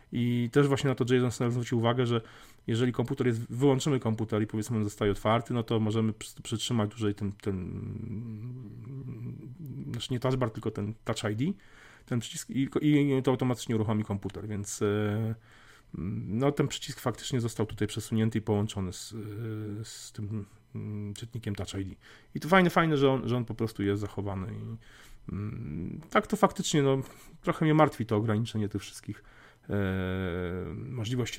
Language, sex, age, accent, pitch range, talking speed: Polish, male, 30-49, native, 105-125 Hz, 160 wpm